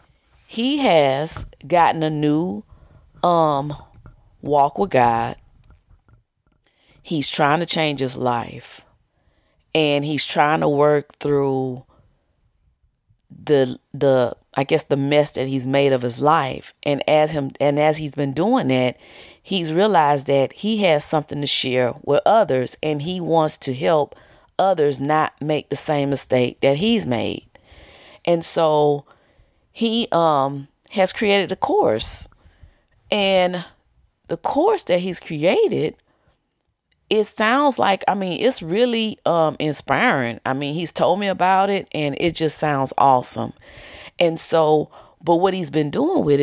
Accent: American